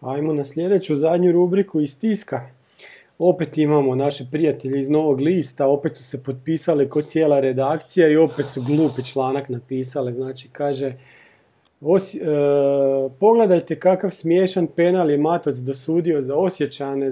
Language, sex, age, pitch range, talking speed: Croatian, male, 40-59, 140-175 Hz, 140 wpm